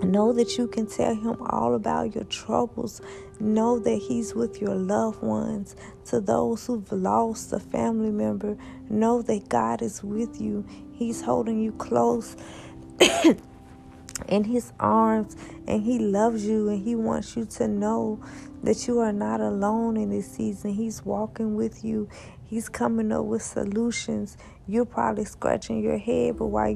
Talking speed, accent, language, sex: 160 wpm, American, English, female